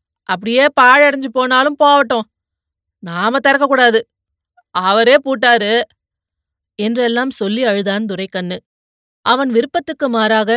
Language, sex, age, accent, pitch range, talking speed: Tamil, female, 30-49, native, 200-245 Hz, 90 wpm